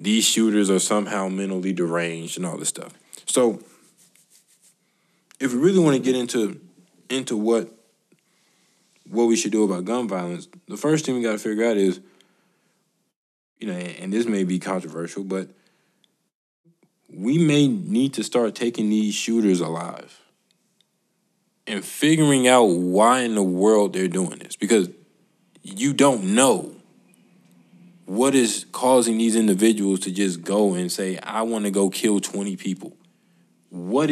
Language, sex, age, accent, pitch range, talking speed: English, male, 20-39, American, 100-150 Hz, 150 wpm